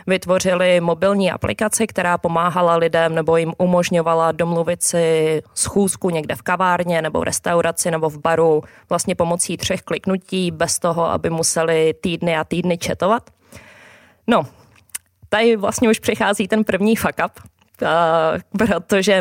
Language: Czech